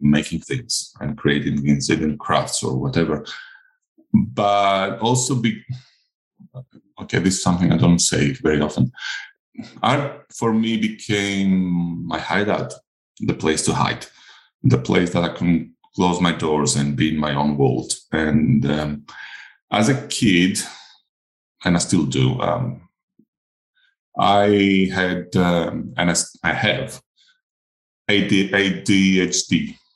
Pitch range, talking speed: 75-105 Hz, 120 wpm